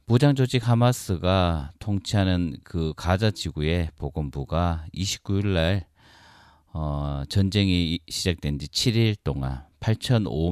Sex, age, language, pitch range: male, 40-59, Korean, 80-105 Hz